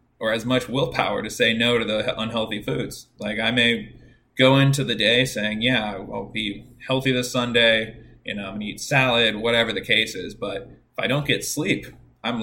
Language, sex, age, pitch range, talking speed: English, male, 20-39, 110-130 Hz, 205 wpm